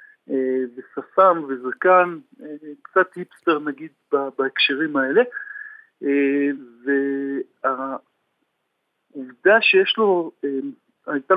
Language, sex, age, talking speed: Hebrew, male, 50-69, 60 wpm